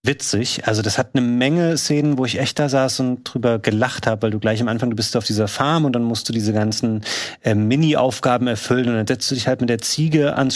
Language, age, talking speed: German, 30-49, 255 wpm